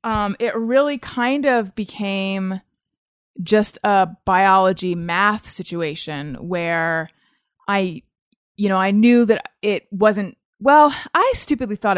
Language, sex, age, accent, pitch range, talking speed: English, female, 30-49, American, 165-205 Hz, 120 wpm